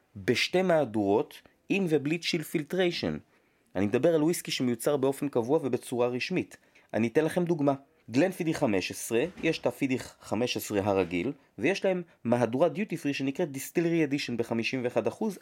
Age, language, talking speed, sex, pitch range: 30-49, Hebrew, 145 wpm, male, 115-165 Hz